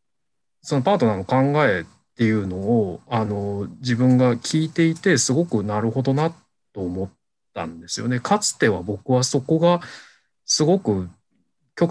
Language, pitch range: Japanese, 105-140 Hz